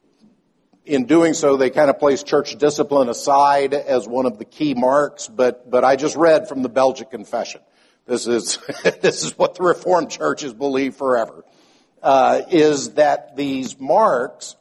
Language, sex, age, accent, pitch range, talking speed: English, male, 60-79, American, 140-180 Hz, 160 wpm